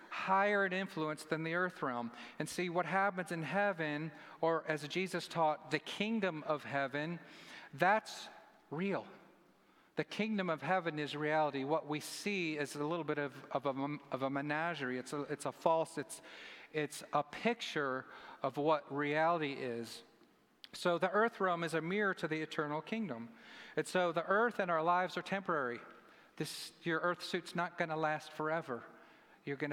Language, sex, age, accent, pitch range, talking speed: English, male, 40-59, American, 150-185 Hz, 170 wpm